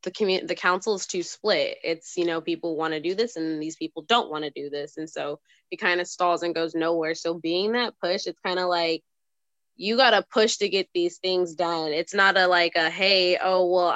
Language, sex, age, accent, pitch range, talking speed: English, female, 20-39, American, 180-225 Hz, 245 wpm